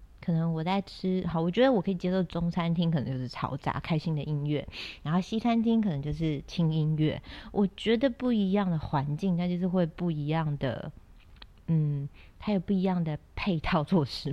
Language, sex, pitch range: Chinese, female, 150-190 Hz